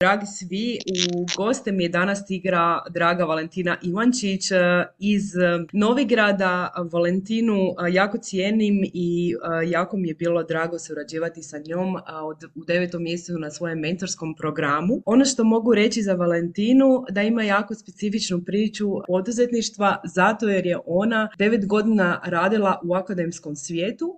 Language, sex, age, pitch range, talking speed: Croatian, female, 20-39, 175-215 Hz, 135 wpm